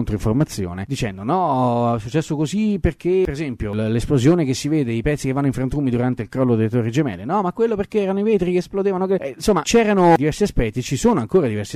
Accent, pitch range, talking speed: native, 115-145 Hz, 220 wpm